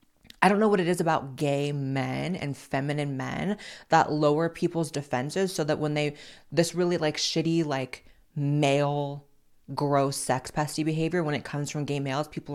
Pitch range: 145-185 Hz